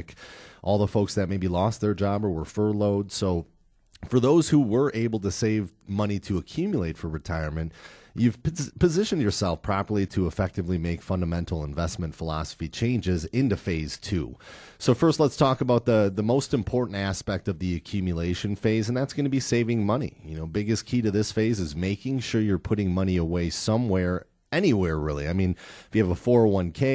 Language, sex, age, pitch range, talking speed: English, male, 30-49, 90-115 Hz, 185 wpm